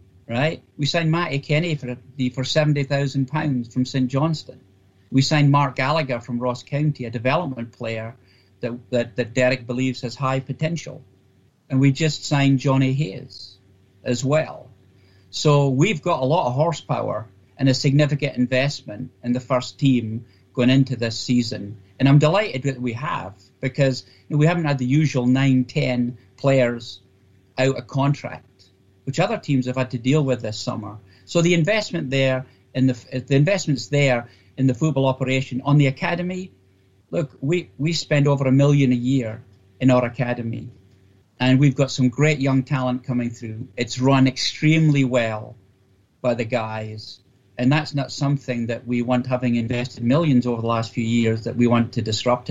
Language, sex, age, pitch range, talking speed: English, male, 40-59, 115-140 Hz, 175 wpm